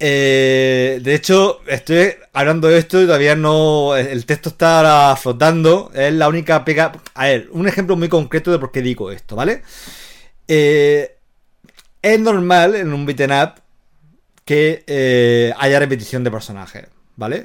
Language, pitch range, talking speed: Spanish, 120-155 Hz, 150 wpm